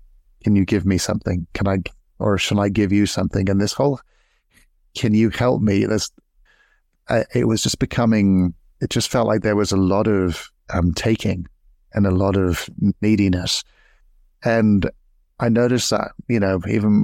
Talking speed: 170 wpm